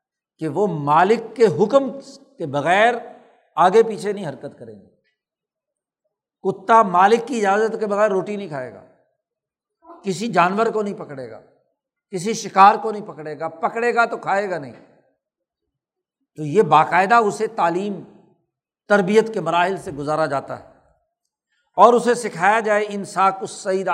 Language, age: Urdu, 60-79